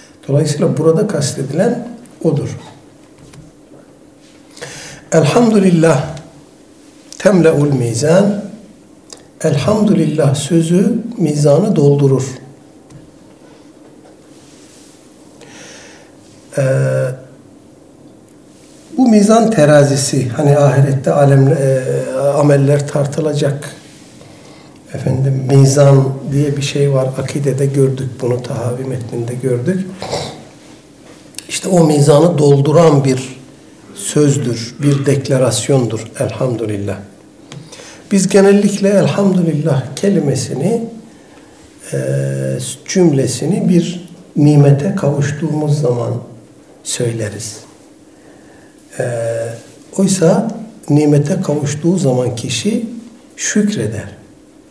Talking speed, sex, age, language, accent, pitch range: 65 wpm, male, 60-79, Turkish, native, 135-175 Hz